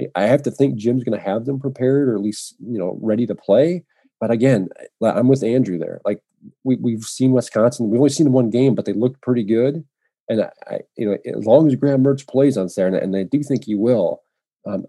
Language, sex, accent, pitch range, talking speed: English, male, American, 105-130 Hz, 240 wpm